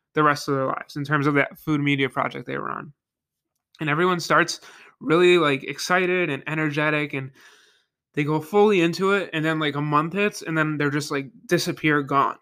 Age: 20-39